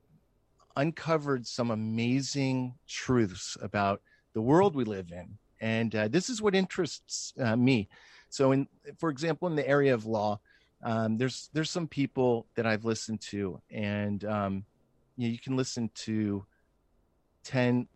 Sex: male